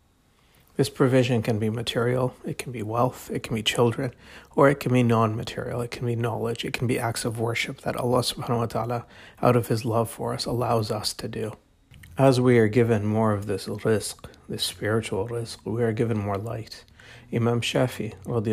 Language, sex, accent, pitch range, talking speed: English, male, American, 105-120 Hz, 200 wpm